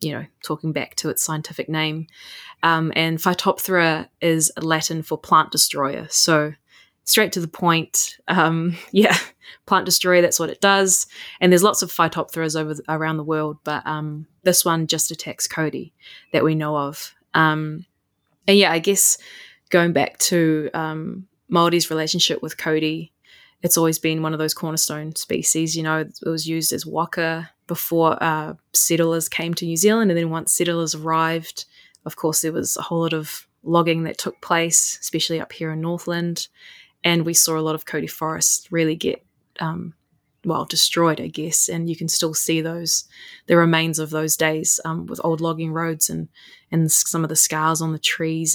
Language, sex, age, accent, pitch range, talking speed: English, female, 20-39, Australian, 160-170 Hz, 180 wpm